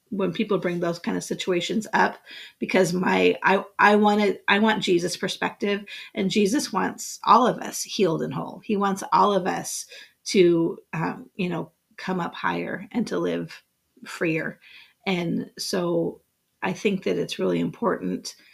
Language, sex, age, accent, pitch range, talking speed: English, female, 40-59, American, 175-210 Hz, 160 wpm